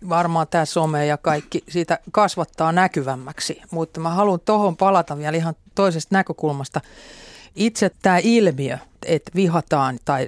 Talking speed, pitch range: 135 wpm, 145-175 Hz